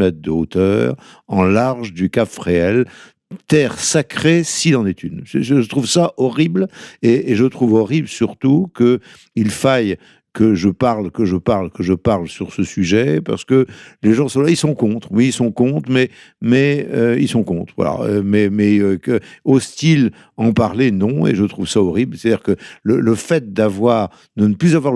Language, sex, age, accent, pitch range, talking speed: French, male, 60-79, French, 95-130 Hz, 190 wpm